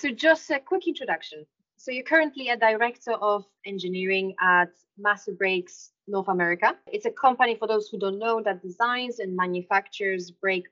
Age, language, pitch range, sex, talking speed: 20-39, English, 180-230 Hz, female, 170 wpm